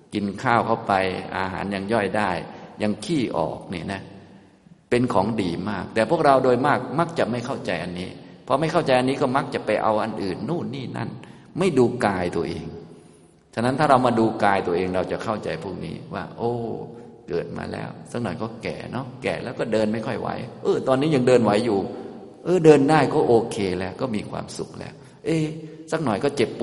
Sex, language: male, Thai